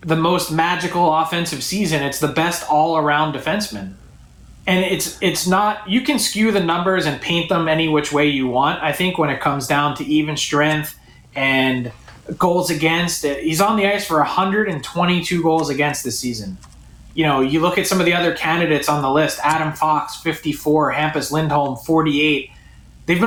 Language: English